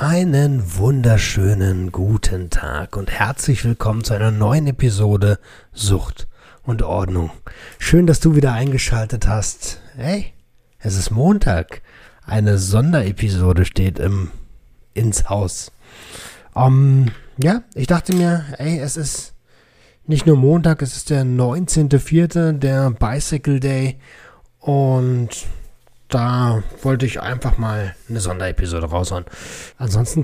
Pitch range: 105-140 Hz